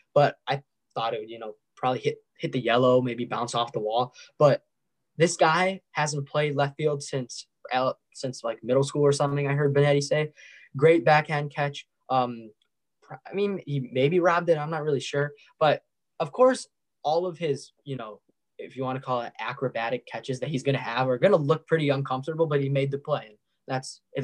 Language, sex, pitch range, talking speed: English, male, 130-160 Hz, 200 wpm